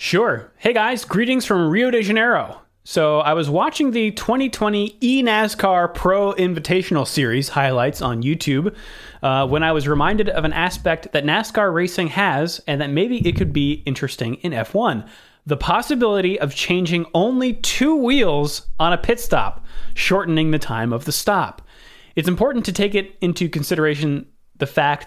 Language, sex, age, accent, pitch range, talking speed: English, male, 30-49, American, 140-200 Hz, 165 wpm